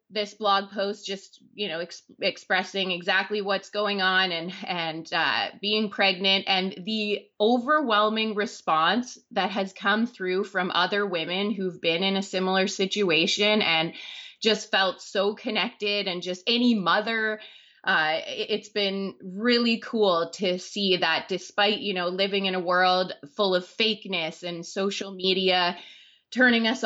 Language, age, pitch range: English, 20-39, 175-210 Hz